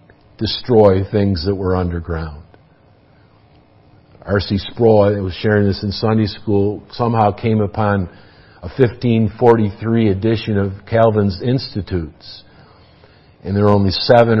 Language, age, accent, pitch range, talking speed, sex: English, 50-69, American, 100-115 Hz, 115 wpm, male